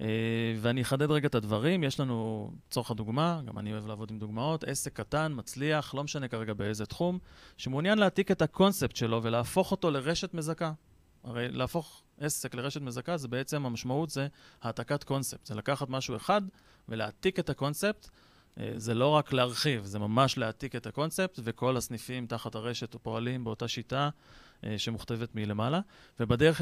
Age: 30-49